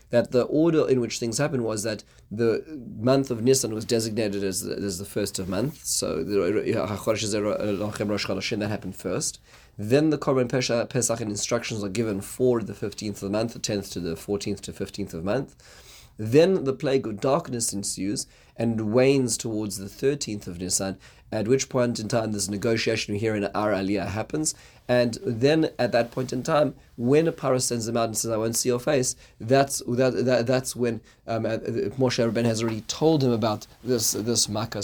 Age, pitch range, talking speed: 30-49, 105-125 Hz, 190 wpm